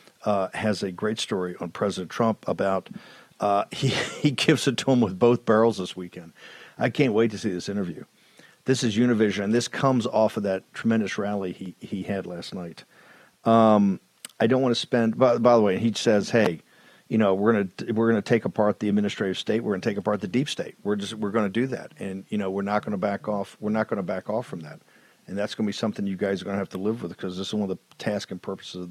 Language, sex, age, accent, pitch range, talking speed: English, male, 50-69, American, 100-130 Hz, 265 wpm